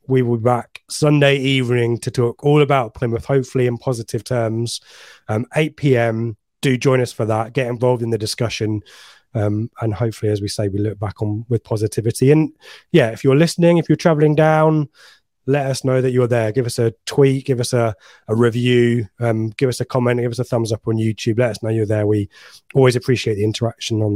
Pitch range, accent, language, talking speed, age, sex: 115-140 Hz, British, English, 215 wpm, 20-39, male